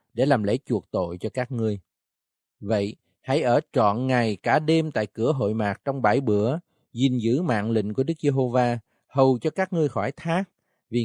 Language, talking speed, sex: Vietnamese, 195 wpm, male